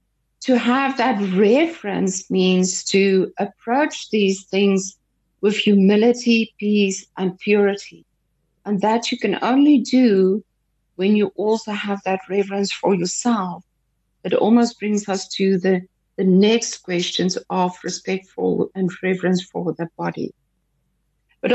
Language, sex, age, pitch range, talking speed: English, female, 60-79, 190-230 Hz, 125 wpm